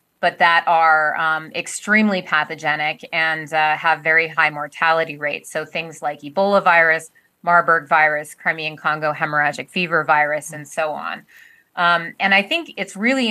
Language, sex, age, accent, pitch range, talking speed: English, female, 30-49, American, 160-185 Hz, 155 wpm